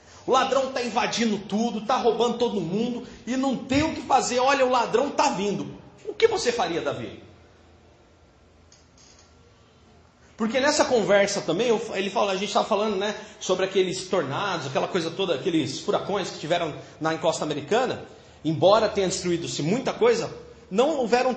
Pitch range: 160-230 Hz